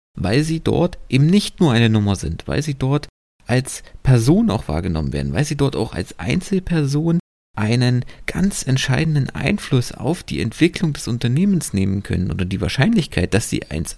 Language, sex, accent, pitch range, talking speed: German, male, German, 95-150 Hz, 170 wpm